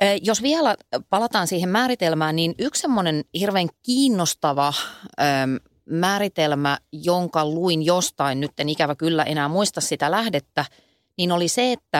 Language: Finnish